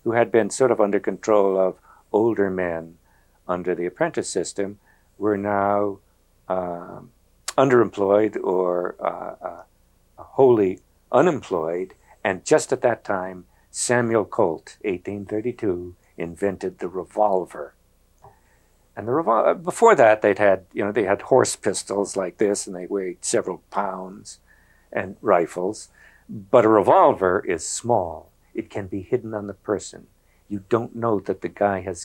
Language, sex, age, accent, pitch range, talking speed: English, male, 60-79, American, 90-105 Hz, 140 wpm